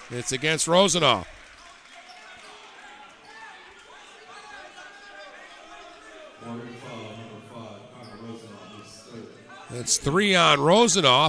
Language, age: English, 50-69